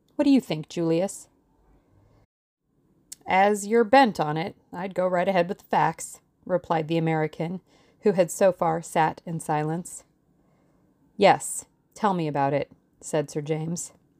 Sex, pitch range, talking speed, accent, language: female, 155-210 Hz, 150 wpm, American, English